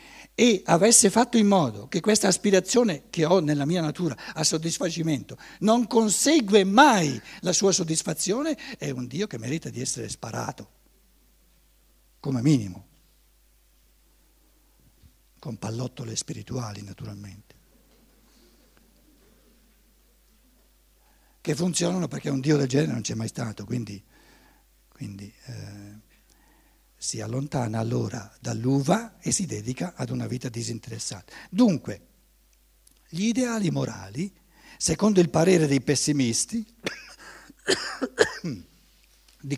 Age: 60-79